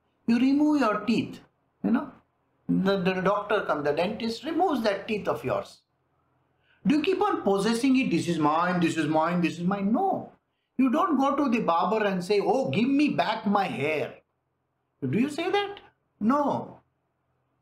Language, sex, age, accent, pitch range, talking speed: English, male, 60-79, Indian, 190-275 Hz, 175 wpm